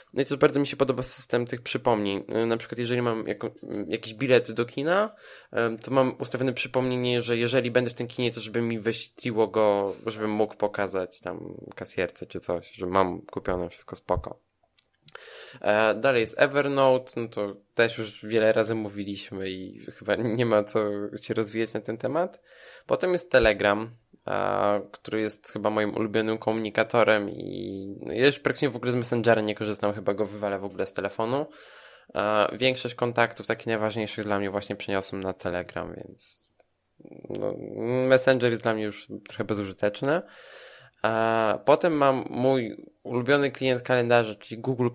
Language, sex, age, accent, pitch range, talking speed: Polish, male, 20-39, native, 105-125 Hz, 165 wpm